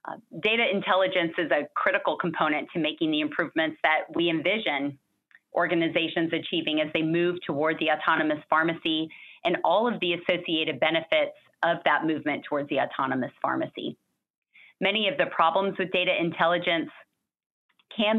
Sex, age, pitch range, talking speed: female, 30-49, 155-190 Hz, 145 wpm